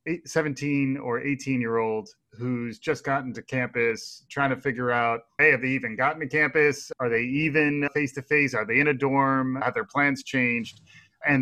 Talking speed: 190 wpm